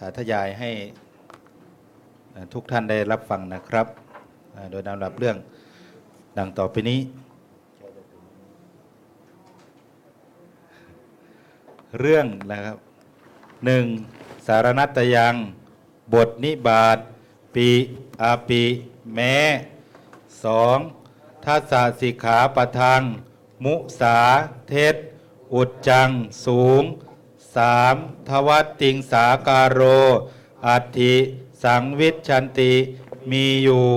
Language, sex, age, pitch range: Thai, male, 60-79, 120-140 Hz